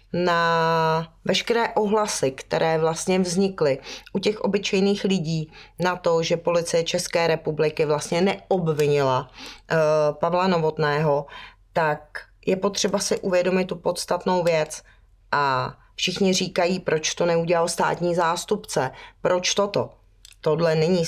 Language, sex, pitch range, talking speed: Czech, female, 140-180 Hz, 115 wpm